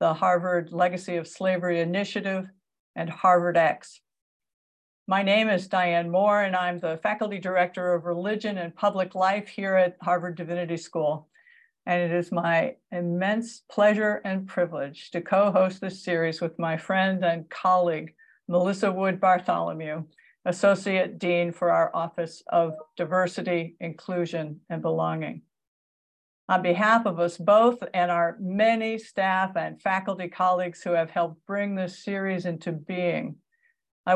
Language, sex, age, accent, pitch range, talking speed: English, female, 60-79, American, 170-200 Hz, 140 wpm